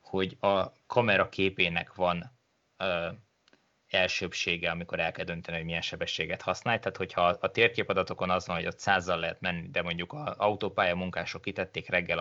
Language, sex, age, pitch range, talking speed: Hungarian, male, 20-39, 85-105 Hz, 155 wpm